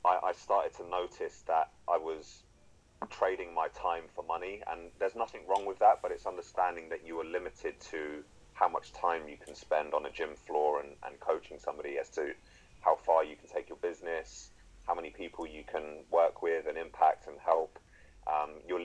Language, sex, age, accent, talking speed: English, male, 30-49, British, 195 wpm